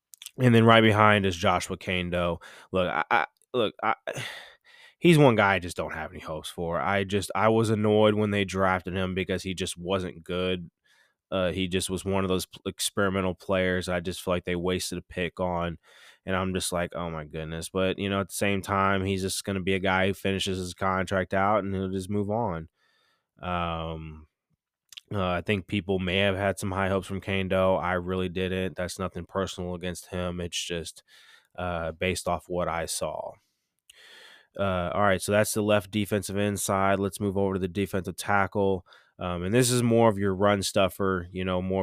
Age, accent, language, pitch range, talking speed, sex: 20-39, American, English, 90-100 Hz, 200 wpm, male